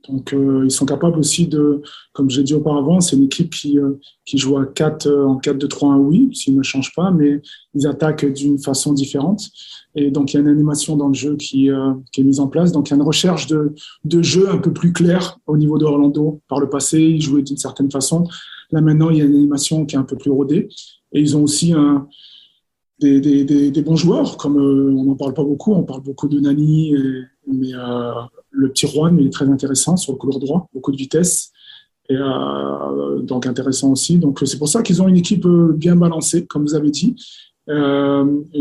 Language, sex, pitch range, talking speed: French, male, 135-155 Hz, 235 wpm